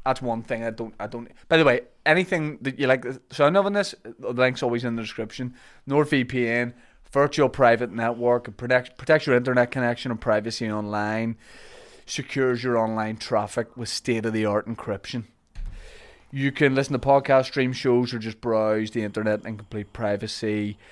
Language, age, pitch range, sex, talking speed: English, 20-39, 110-130 Hz, male, 185 wpm